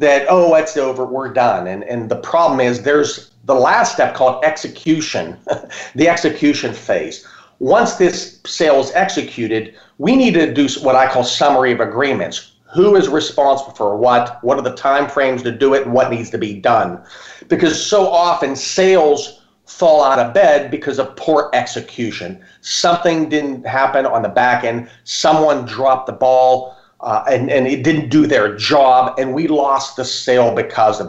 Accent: American